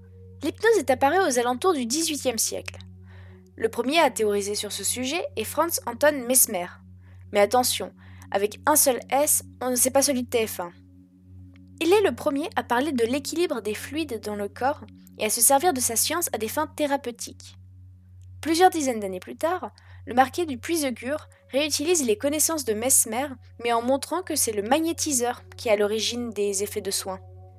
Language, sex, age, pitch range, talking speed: French, female, 20-39, 175-280 Hz, 185 wpm